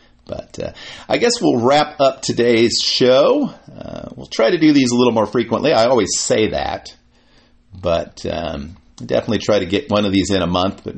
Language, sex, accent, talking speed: English, male, American, 195 wpm